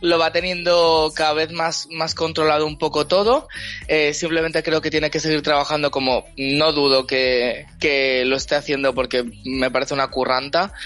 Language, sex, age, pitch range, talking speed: Spanish, male, 20-39, 145-185 Hz, 175 wpm